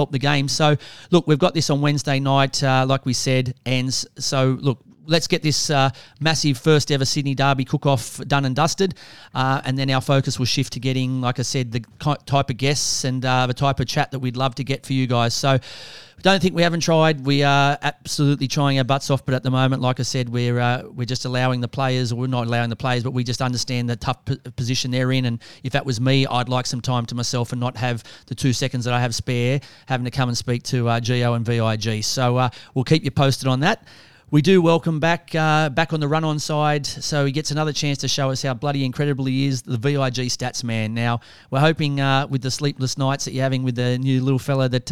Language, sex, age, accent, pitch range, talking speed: English, male, 30-49, Australian, 125-150 Hz, 250 wpm